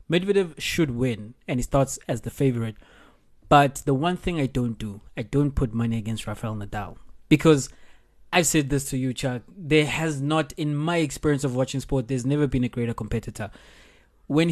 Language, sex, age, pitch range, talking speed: English, male, 20-39, 120-150 Hz, 190 wpm